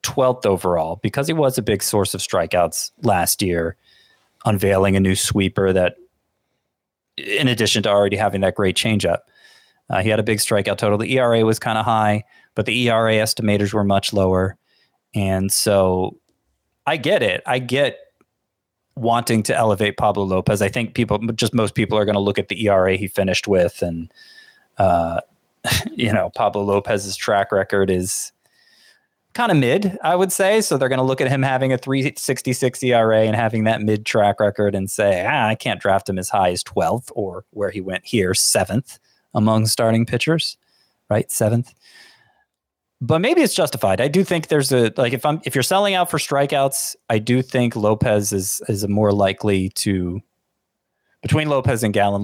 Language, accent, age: English, American, 20-39